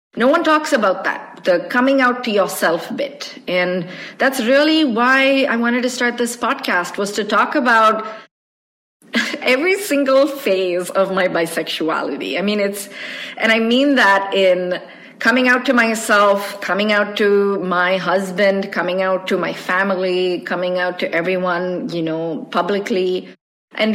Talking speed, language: 155 wpm, English